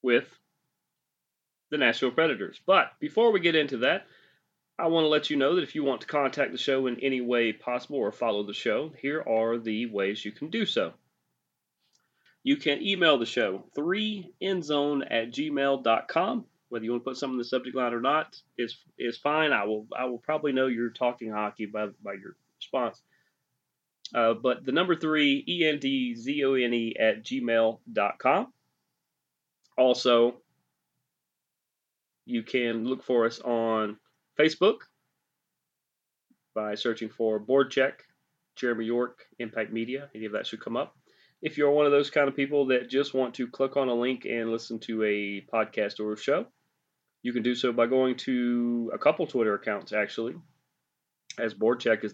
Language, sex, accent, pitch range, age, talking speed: English, male, American, 115-145 Hz, 30-49, 165 wpm